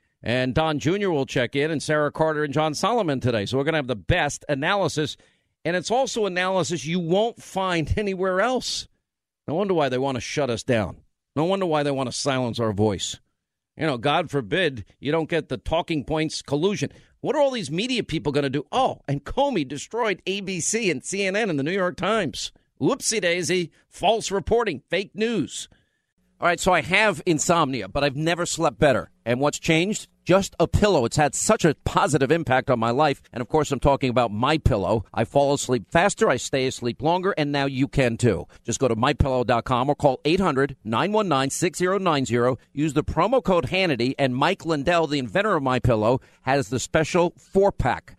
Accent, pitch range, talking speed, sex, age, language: American, 130-180 Hz, 195 wpm, male, 50-69, English